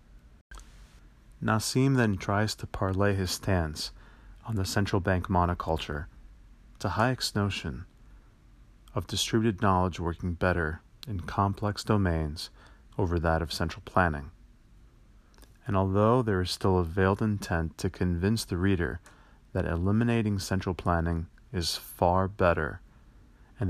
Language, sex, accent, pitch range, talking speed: English, male, American, 85-100 Hz, 120 wpm